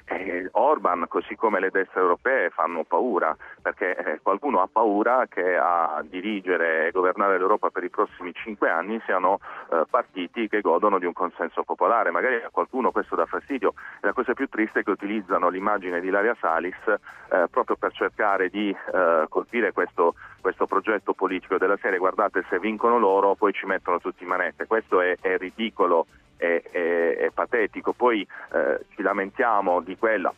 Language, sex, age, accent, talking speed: Italian, male, 40-59, native, 165 wpm